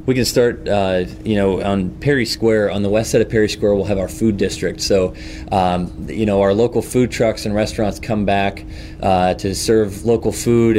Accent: American